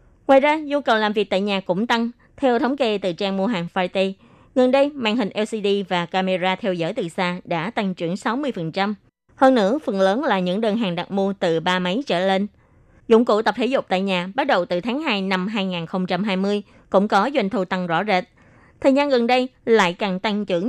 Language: Vietnamese